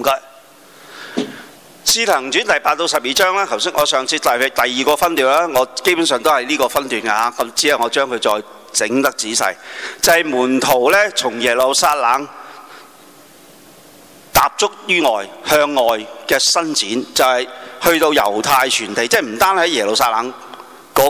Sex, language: male, Chinese